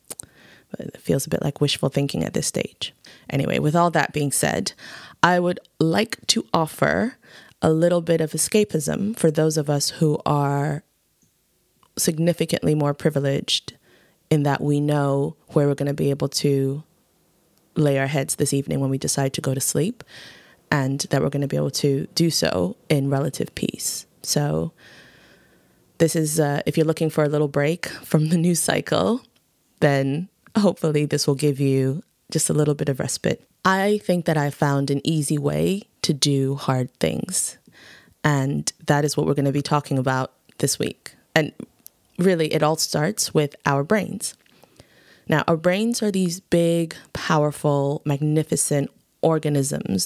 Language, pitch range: English, 140-170 Hz